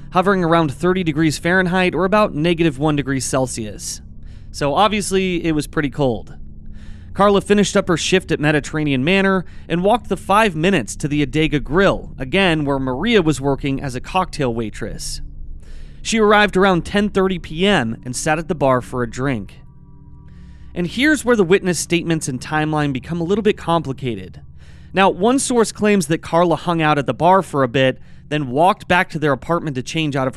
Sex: male